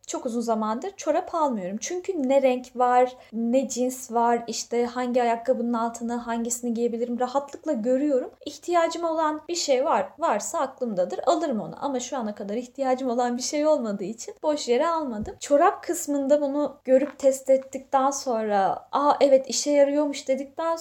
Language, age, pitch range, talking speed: Turkish, 10-29, 235-300 Hz, 155 wpm